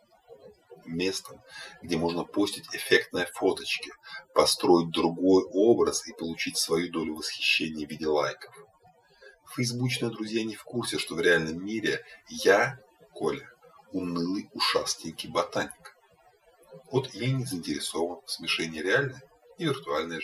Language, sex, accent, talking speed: Russian, male, native, 120 wpm